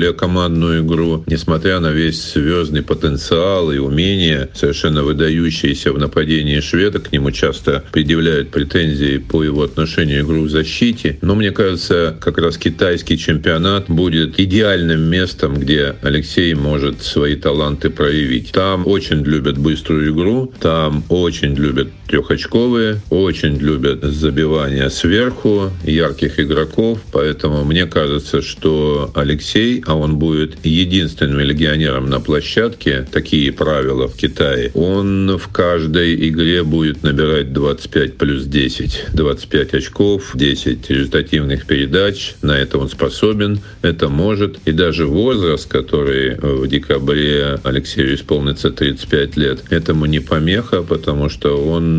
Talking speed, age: 125 wpm, 50-69